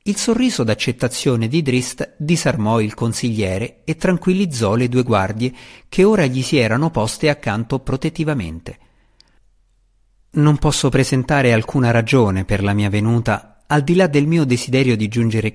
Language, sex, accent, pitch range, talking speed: Italian, male, native, 105-160 Hz, 145 wpm